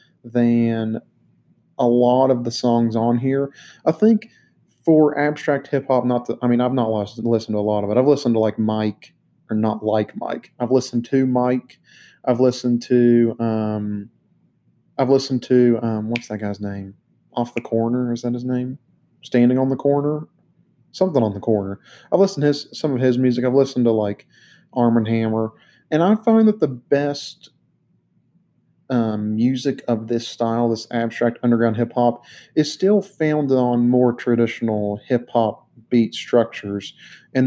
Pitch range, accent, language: 115-135 Hz, American, English